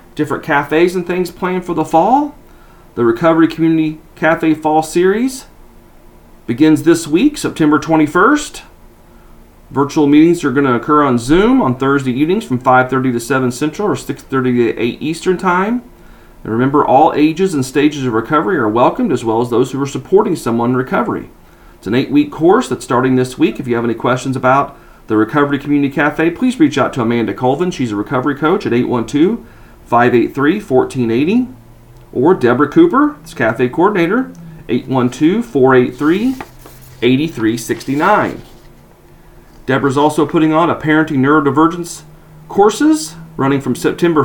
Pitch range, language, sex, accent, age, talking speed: 125-160 Hz, English, male, American, 40-59, 150 wpm